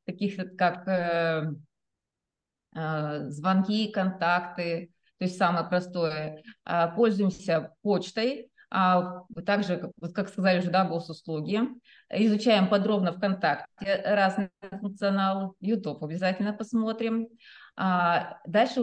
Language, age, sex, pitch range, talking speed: Russian, 20-39, female, 180-225 Hz, 80 wpm